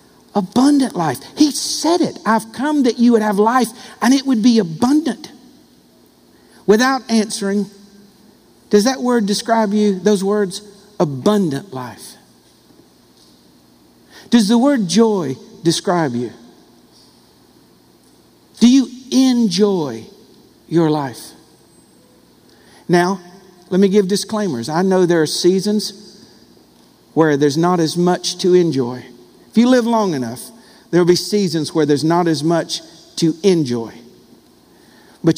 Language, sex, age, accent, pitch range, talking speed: English, male, 60-79, American, 160-220 Hz, 120 wpm